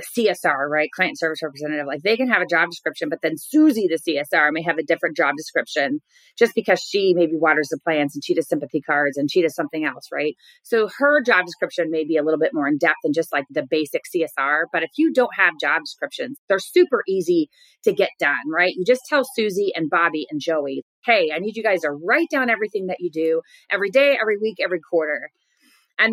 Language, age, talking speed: English, 30-49, 230 wpm